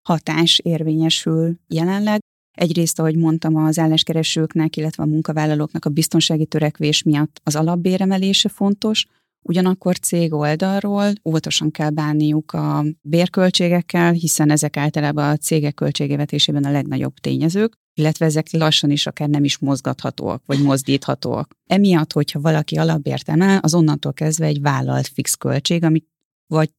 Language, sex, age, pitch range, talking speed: Hungarian, female, 30-49, 150-175 Hz, 135 wpm